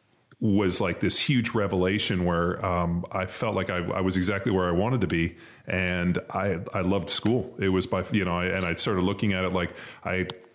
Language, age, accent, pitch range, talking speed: English, 30-49, American, 90-105 Hz, 215 wpm